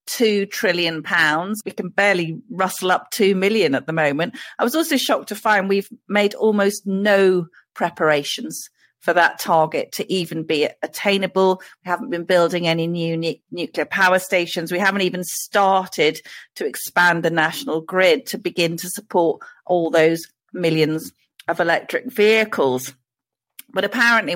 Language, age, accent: English, 40-59, British